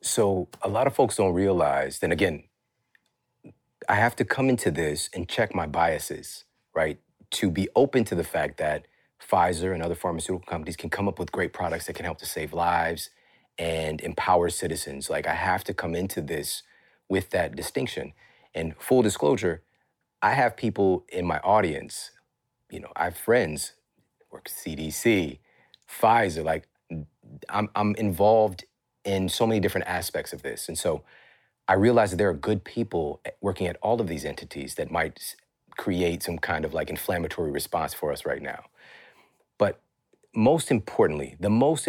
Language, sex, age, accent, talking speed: English, male, 30-49, American, 170 wpm